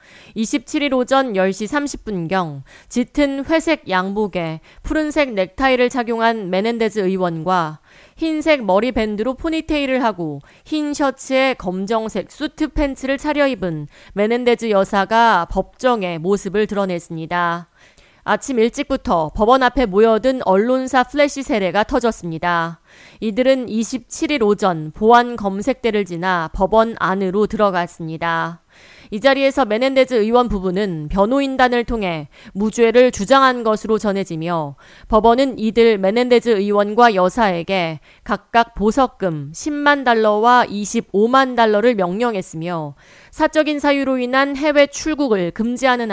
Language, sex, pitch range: Korean, female, 185-260 Hz